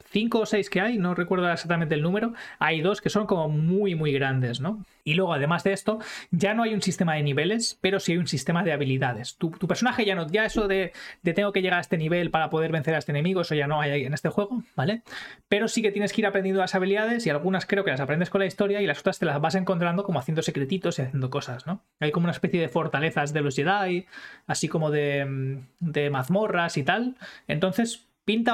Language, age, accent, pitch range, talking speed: Spanish, 20-39, Spanish, 155-195 Hz, 245 wpm